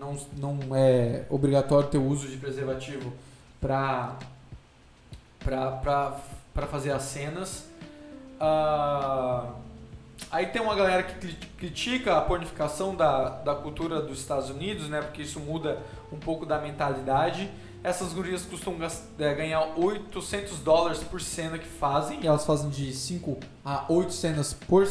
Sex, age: male, 20-39